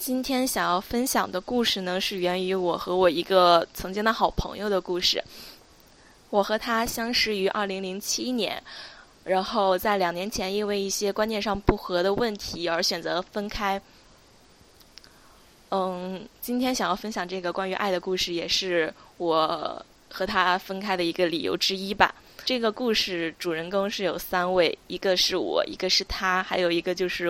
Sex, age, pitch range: female, 20-39, 180-210 Hz